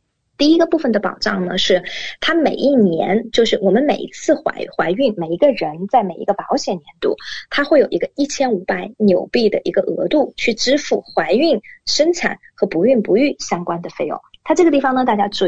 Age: 20-39